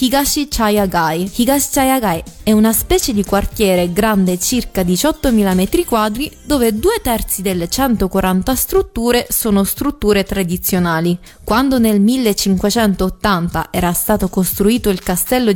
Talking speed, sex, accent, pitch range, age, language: 120 wpm, female, native, 185-250 Hz, 20-39, Italian